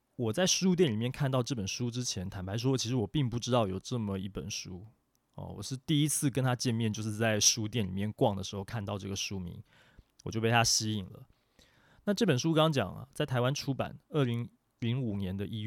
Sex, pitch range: male, 105-135 Hz